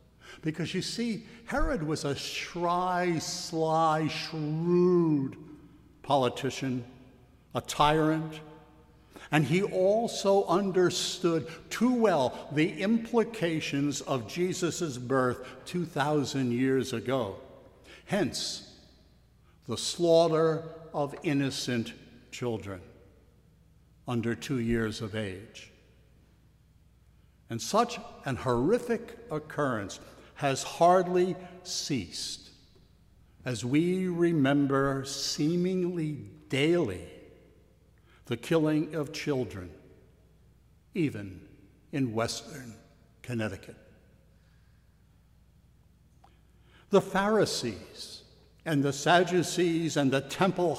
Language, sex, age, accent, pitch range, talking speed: English, male, 60-79, American, 125-170 Hz, 80 wpm